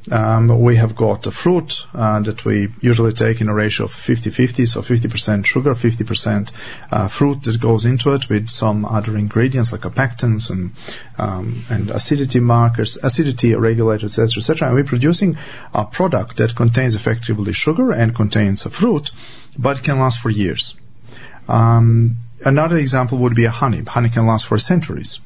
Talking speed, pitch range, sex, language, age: 170 wpm, 110-130 Hz, male, English, 40-59